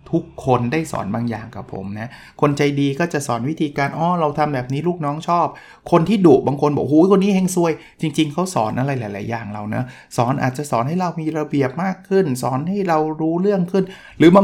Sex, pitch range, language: male, 120-155 Hz, Thai